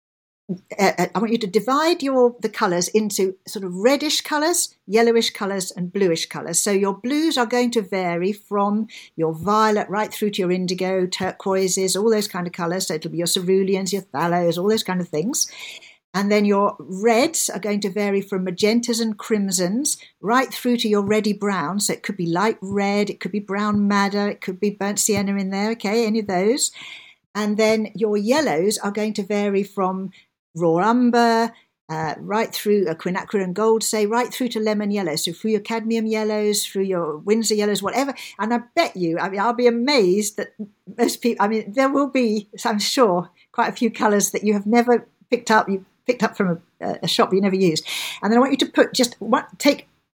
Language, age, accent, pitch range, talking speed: English, 50-69, British, 195-235 Hz, 205 wpm